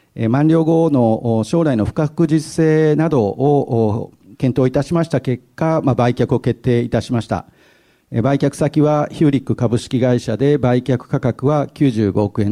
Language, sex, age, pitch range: Japanese, male, 50-69, 115-150 Hz